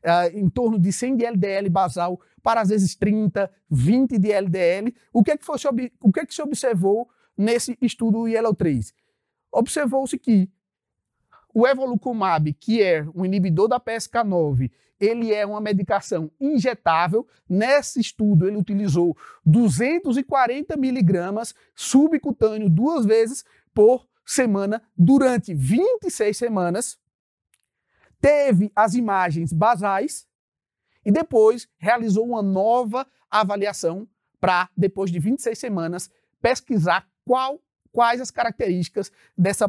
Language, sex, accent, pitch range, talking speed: Portuguese, male, Brazilian, 185-255 Hz, 120 wpm